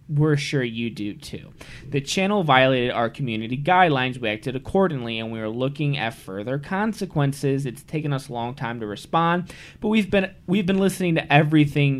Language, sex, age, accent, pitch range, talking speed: English, male, 20-39, American, 130-180 Hz, 185 wpm